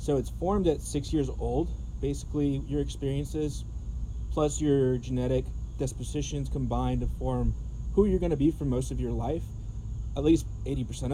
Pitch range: 120-150 Hz